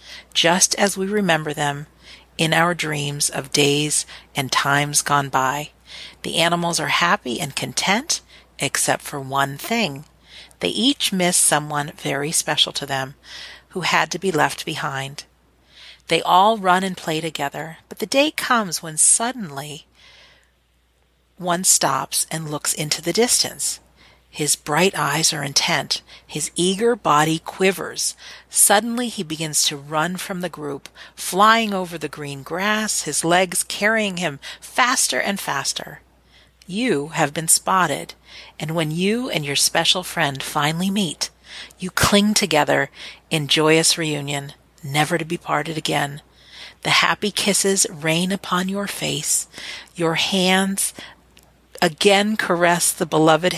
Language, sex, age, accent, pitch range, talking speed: English, female, 40-59, American, 145-190 Hz, 140 wpm